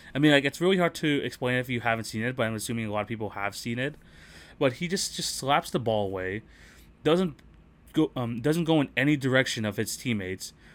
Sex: male